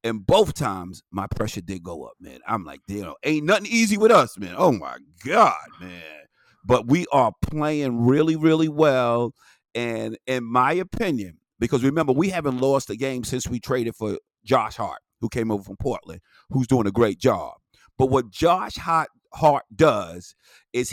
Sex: male